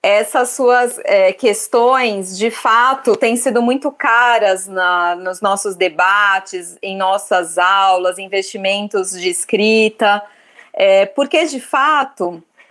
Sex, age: female, 20-39